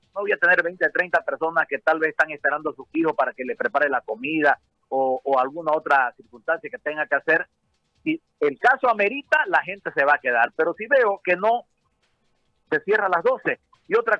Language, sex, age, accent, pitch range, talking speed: Spanish, male, 50-69, Mexican, 150-215 Hz, 225 wpm